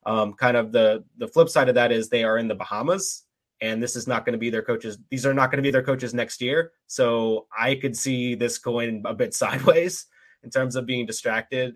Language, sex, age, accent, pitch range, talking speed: English, male, 20-39, American, 105-130 Hz, 235 wpm